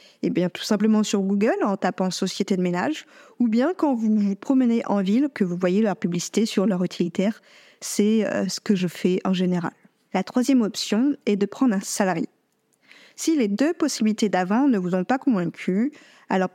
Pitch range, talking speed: 200-255 Hz, 190 wpm